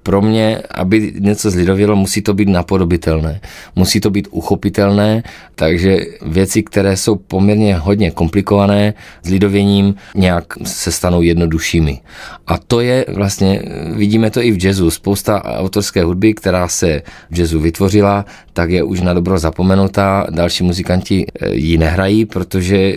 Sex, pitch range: male, 90-100 Hz